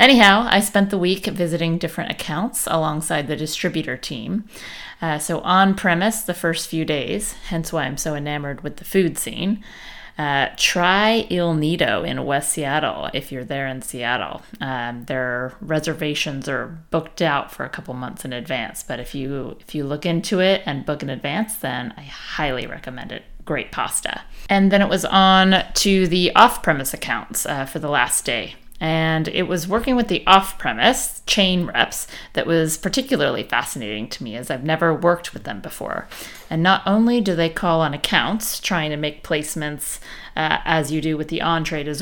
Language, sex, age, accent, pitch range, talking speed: English, female, 30-49, American, 150-190 Hz, 180 wpm